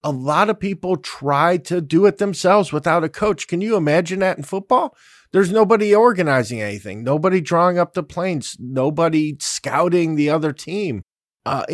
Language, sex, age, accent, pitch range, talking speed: English, male, 50-69, American, 130-180 Hz, 170 wpm